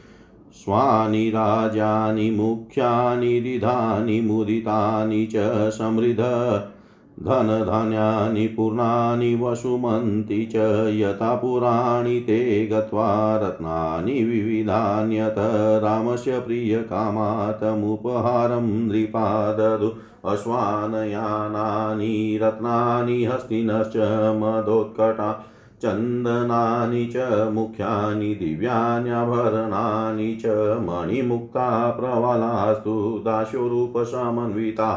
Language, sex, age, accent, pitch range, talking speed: Hindi, male, 40-59, native, 110-120 Hz, 55 wpm